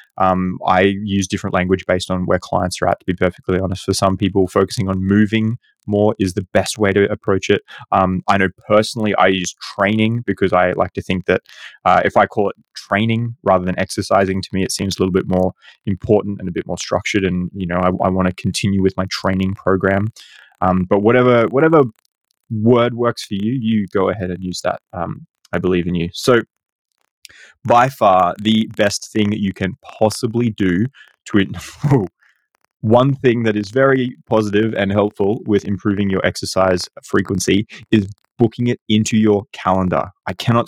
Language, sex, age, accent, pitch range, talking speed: English, male, 20-39, Australian, 95-115 Hz, 190 wpm